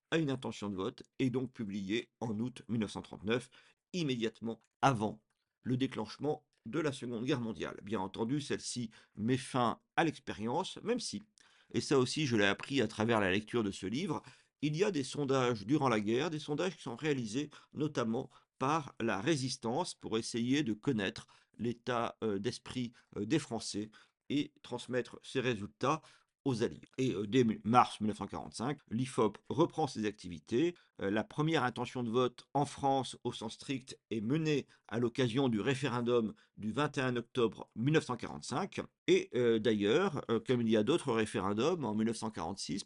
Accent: French